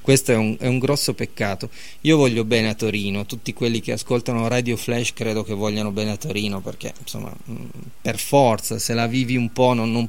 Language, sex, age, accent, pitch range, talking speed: Italian, male, 30-49, native, 110-140 Hz, 200 wpm